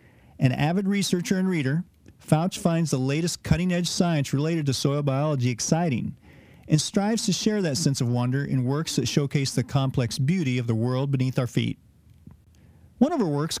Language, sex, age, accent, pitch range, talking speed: English, male, 40-59, American, 130-175 Hz, 180 wpm